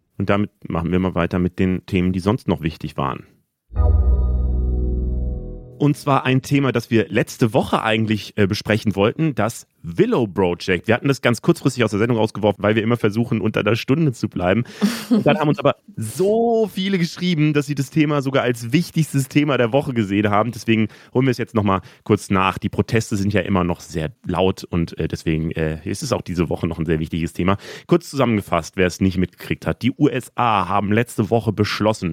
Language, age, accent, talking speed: German, 30-49, German, 200 wpm